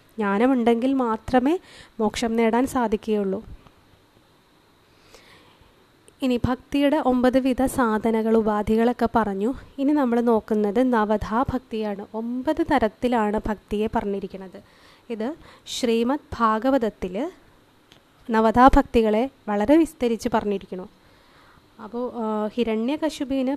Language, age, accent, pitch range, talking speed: Malayalam, 20-39, native, 220-265 Hz, 75 wpm